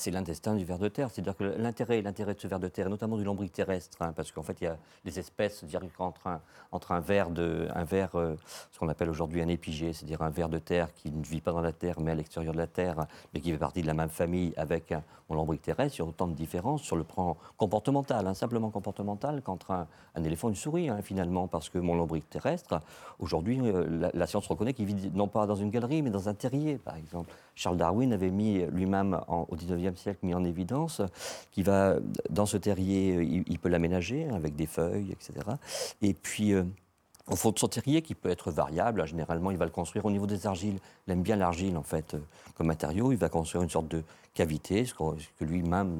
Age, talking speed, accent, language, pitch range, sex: 50-69, 240 wpm, French, French, 85-100 Hz, male